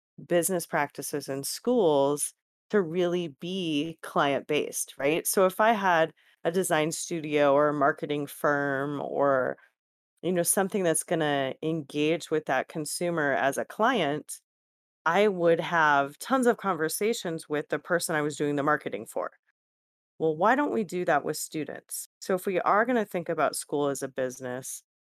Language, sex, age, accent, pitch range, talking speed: English, female, 30-49, American, 145-185 Hz, 165 wpm